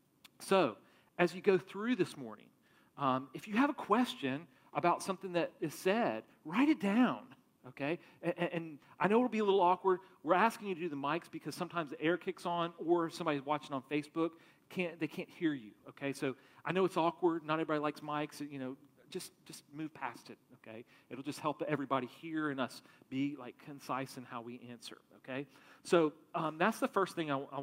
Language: English